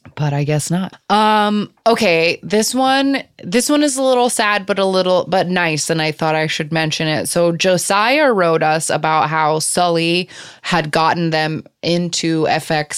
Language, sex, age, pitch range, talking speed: English, female, 20-39, 155-180 Hz, 175 wpm